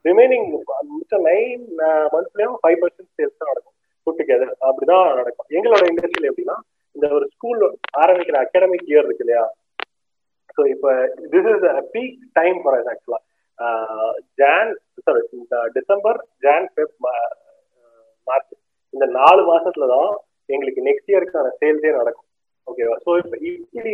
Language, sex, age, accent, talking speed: Tamil, male, 30-49, native, 120 wpm